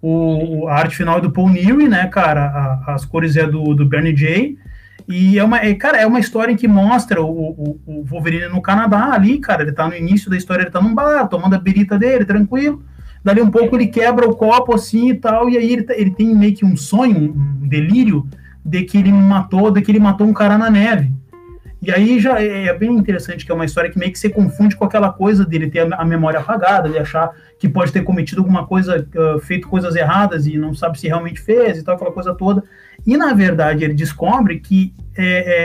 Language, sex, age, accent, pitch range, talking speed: Portuguese, male, 20-39, Brazilian, 155-210 Hz, 230 wpm